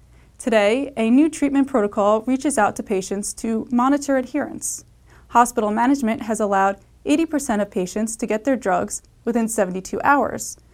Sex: female